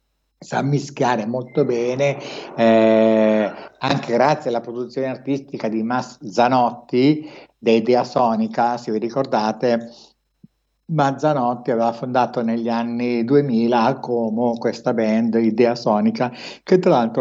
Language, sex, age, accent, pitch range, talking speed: Italian, male, 60-79, native, 120-145 Hz, 115 wpm